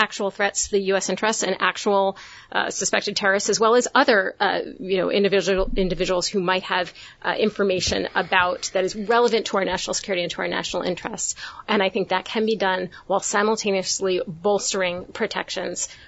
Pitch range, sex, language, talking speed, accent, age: 185-225 Hz, female, English, 185 wpm, American, 30-49